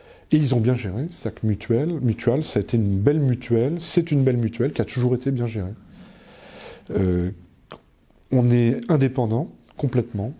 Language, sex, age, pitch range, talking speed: French, male, 40-59, 105-125 Hz, 175 wpm